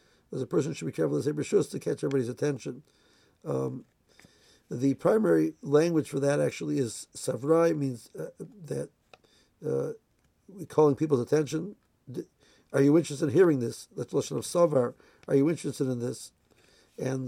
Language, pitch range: English, 135-155 Hz